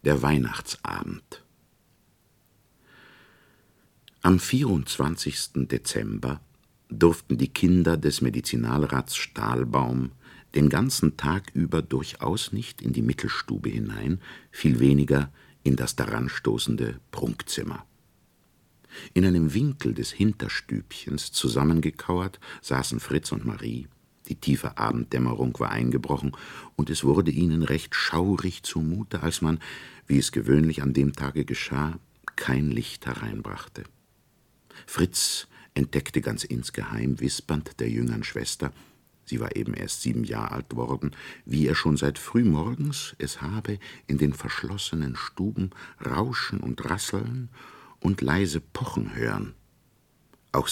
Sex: male